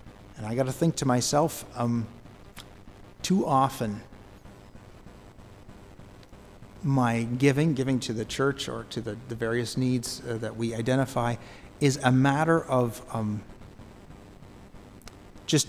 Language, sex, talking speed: English, male, 120 wpm